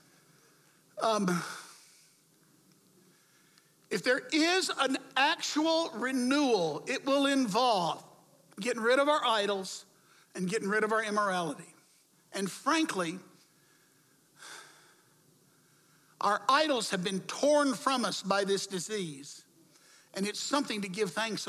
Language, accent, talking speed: English, American, 110 wpm